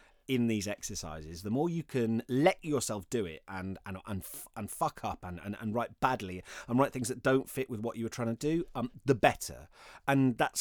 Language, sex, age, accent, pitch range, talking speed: English, male, 30-49, British, 95-140 Hz, 225 wpm